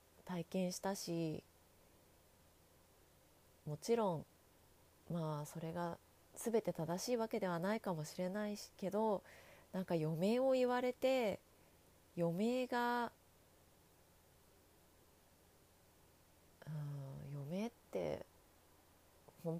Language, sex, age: Japanese, female, 30-49